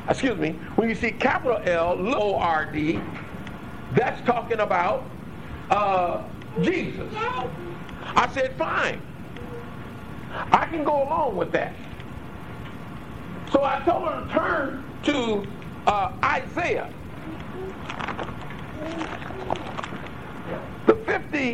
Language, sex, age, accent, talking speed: English, male, 50-69, American, 90 wpm